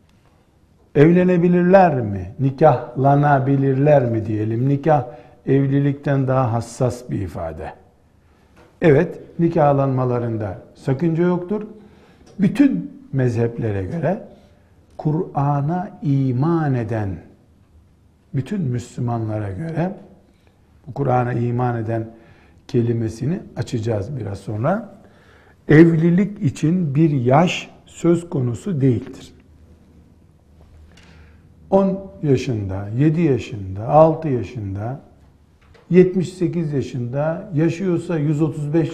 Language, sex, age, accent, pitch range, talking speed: Turkish, male, 60-79, native, 110-165 Hz, 75 wpm